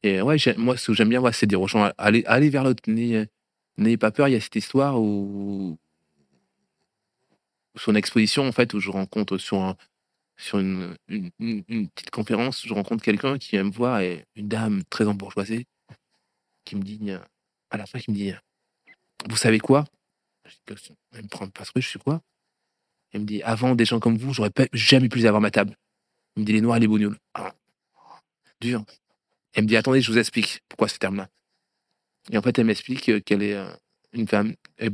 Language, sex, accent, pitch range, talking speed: French, male, French, 100-120 Hz, 215 wpm